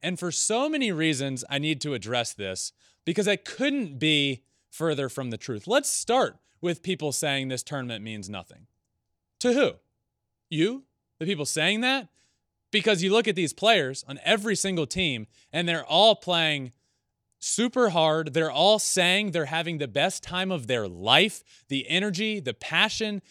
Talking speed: 165 wpm